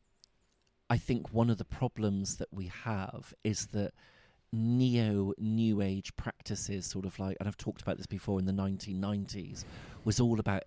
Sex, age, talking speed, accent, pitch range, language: male, 40-59, 165 wpm, British, 95-115 Hz, English